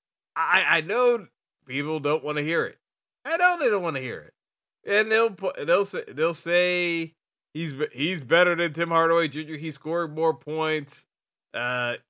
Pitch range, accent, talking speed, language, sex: 125-170 Hz, American, 180 wpm, English, male